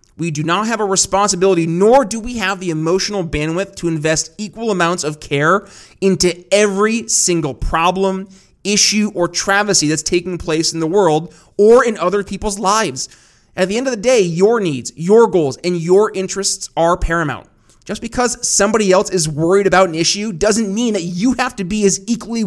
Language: English